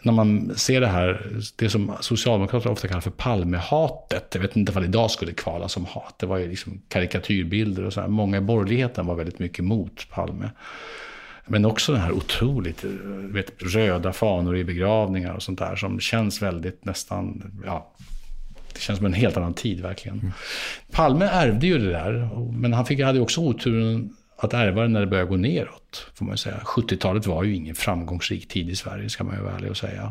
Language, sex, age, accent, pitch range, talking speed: English, male, 50-69, Norwegian, 95-115 Hz, 195 wpm